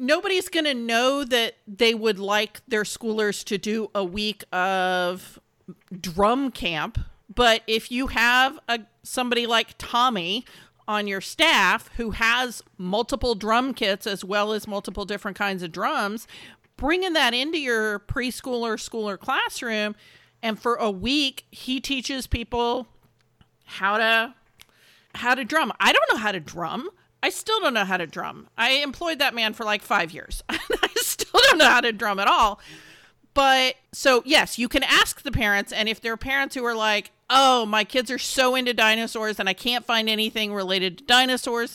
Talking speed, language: 175 wpm, English